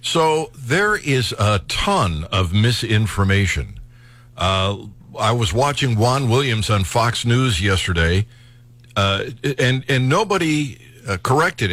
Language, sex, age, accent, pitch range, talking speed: English, male, 60-79, American, 105-130 Hz, 120 wpm